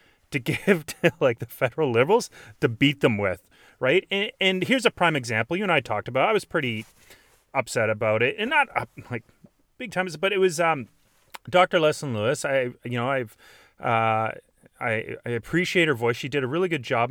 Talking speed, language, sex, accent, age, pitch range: 205 wpm, English, male, American, 30-49, 120-170 Hz